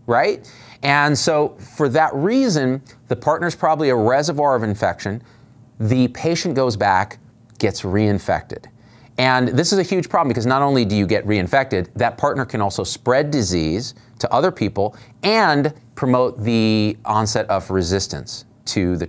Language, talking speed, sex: English, 155 wpm, male